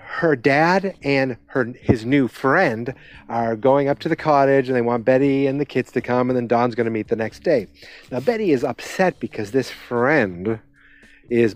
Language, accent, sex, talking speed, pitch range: English, American, male, 200 wpm, 110-135 Hz